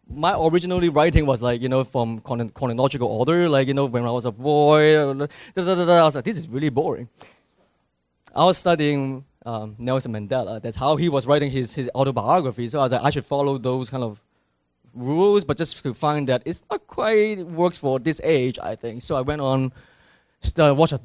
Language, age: English, 20-39